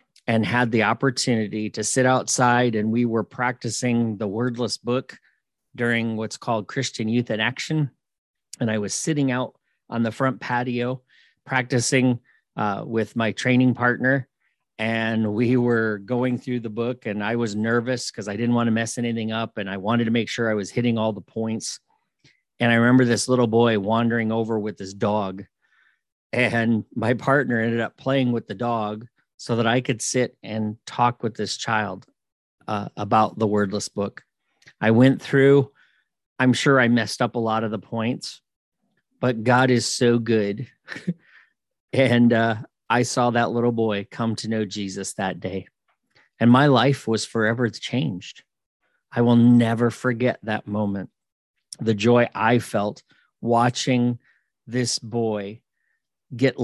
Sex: male